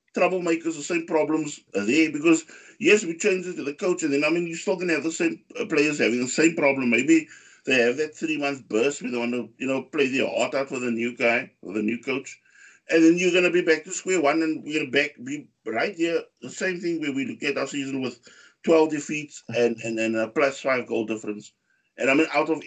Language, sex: English, male